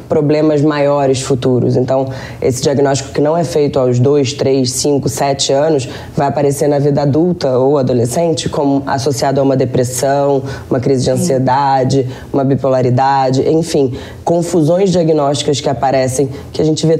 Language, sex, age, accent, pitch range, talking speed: Portuguese, female, 20-39, Brazilian, 135-160 Hz, 150 wpm